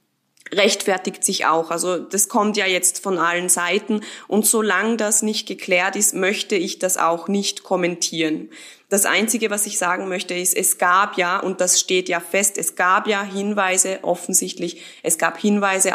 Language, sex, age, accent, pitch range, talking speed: German, female, 20-39, German, 180-210 Hz, 175 wpm